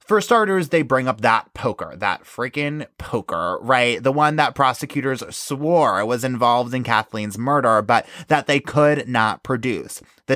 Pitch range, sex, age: 125-165 Hz, male, 20-39